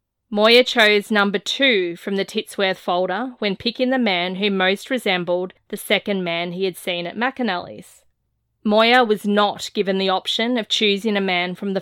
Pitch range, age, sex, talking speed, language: 190-220 Hz, 20-39, female, 180 wpm, English